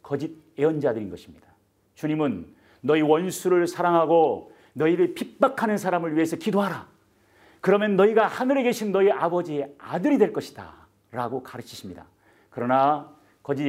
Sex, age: male, 40-59